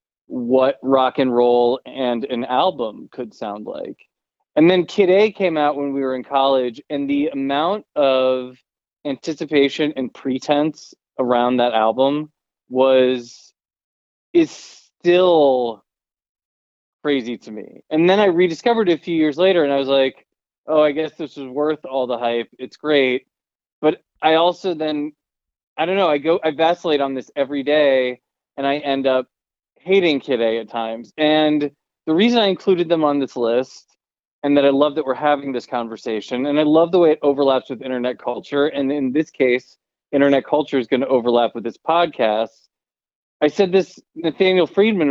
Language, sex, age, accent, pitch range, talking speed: English, male, 20-39, American, 125-155 Hz, 175 wpm